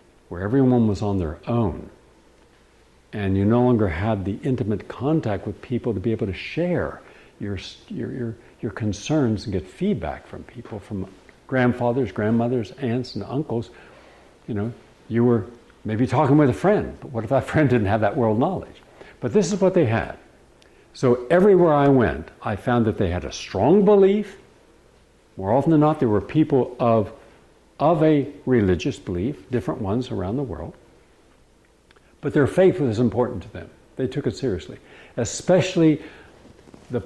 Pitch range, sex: 100-140 Hz, male